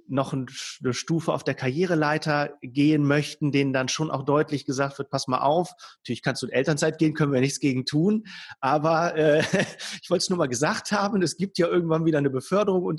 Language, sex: German, male